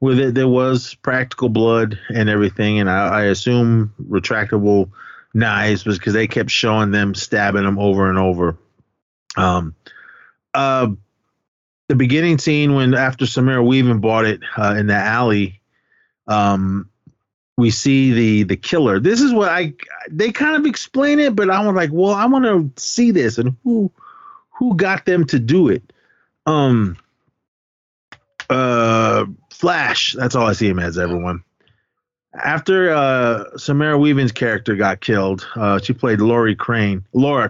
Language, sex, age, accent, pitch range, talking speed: English, male, 30-49, American, 105-140 Hz, 150 wpm